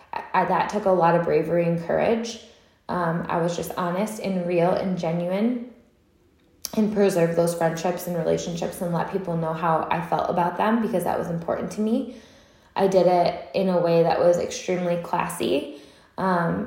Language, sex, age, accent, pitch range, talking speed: English, female, 10-29, American, 175-205 Hz, 180 wpm